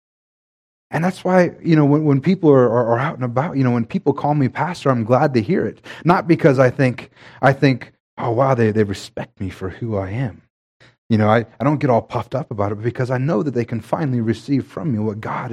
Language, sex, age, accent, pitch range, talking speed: English, male, 30-49, American, 115-155 Hz, 255 wpm